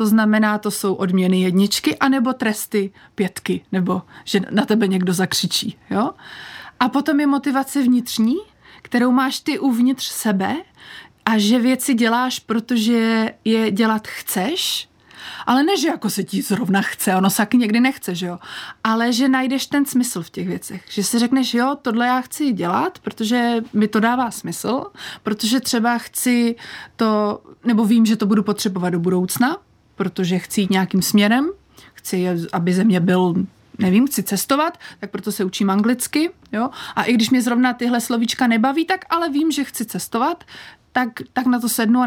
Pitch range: 210-260 Hz